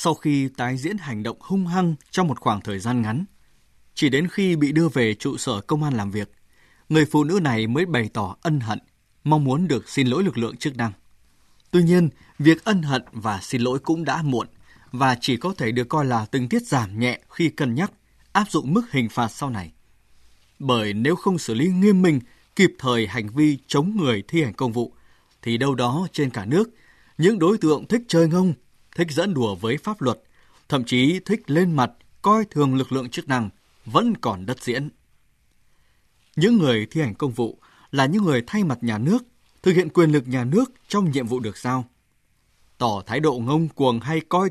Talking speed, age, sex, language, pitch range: 210 wpm, 20-39, male, Vietnamese, 115-170 Hz